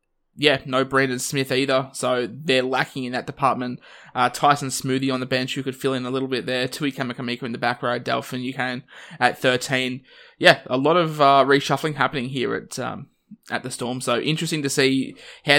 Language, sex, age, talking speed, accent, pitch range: English, male, 20-39, 205 wpm, Australian, 125-140 Hz